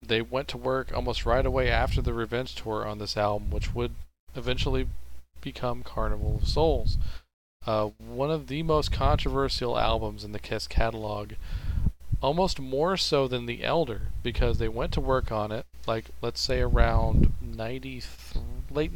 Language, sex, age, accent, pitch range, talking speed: English, male, 40-59, American, 100-125 Hz, 160 wpm